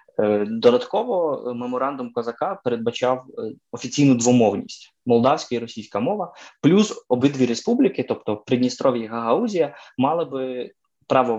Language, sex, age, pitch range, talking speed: Ukrainian, male, 20-39, 115-130 Hz, 105 wpm